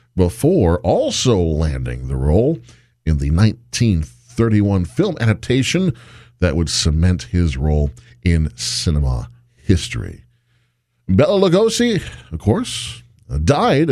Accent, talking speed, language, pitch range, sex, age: American, 100 wpm, English, 90-120 Hz, male, 50-69